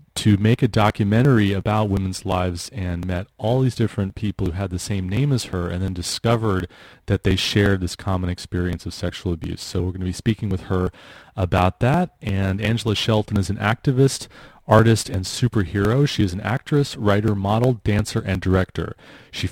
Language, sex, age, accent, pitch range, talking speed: English, male, 30-49, American, 95-115 Hz, 190 wpm